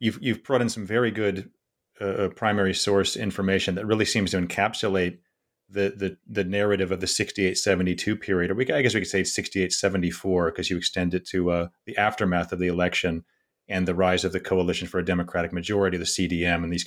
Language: English